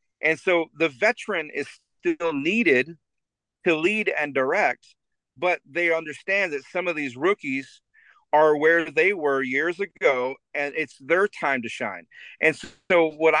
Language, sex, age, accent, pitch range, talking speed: English, male, 40-59, American, 135-175 Hz, 150 wpm